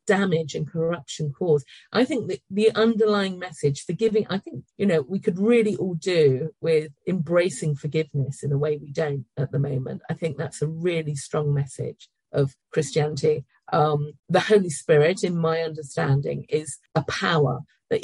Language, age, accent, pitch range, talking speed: English, 50-69, British, 150-195 Hz, 170 wpm